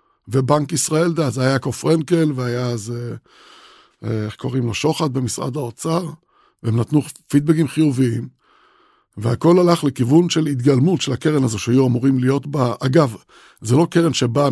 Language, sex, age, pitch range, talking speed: Hebrew, male, 60-79, 120-155 Hz, 145 wpm